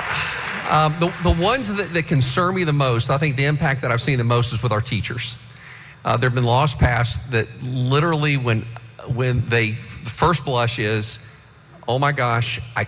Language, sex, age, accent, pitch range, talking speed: English, male, 40-59, American, 120-150 Hz, 195 wpm